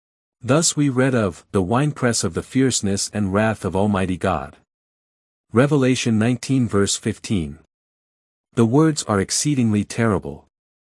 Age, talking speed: 50-69, 125 wpm